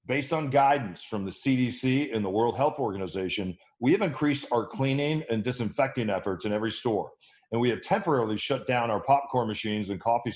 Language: English